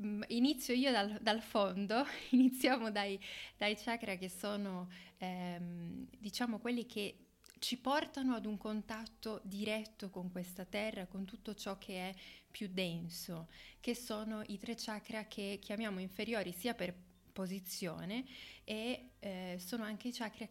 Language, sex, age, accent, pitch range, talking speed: Italian, female, 20-39, native, 185-235 Hz, 140 wpm